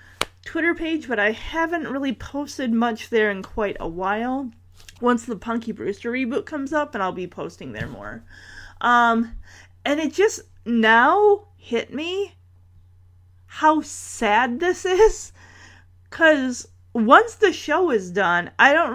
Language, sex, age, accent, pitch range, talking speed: English, female, 30-49, American, 175-265 Hz, 145 wpm